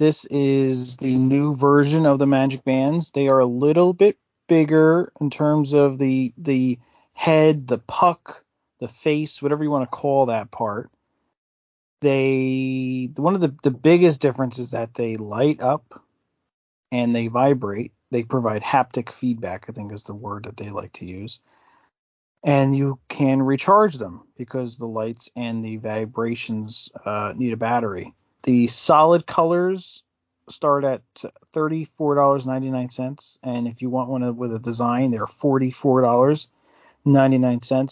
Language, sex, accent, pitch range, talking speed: English, male, American, 120-145 Hz, 145 wpm